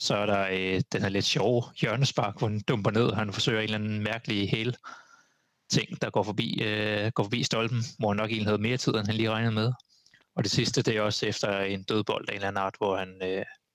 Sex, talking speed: male, 245 wpm